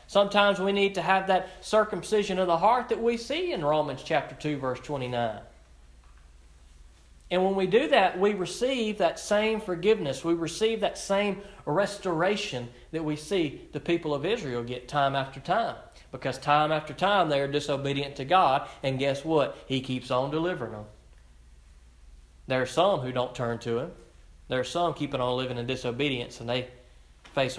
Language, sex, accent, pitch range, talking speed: English, male, American, 120-180 Hz, 175 wpm